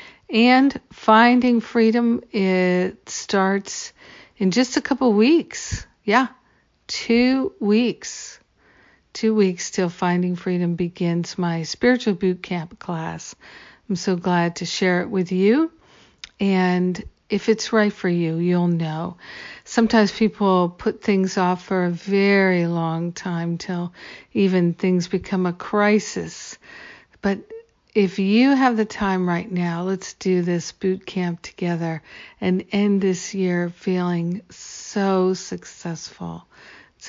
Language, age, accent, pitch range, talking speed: English, 50-69, American, 175-205 Hz, 130 wpm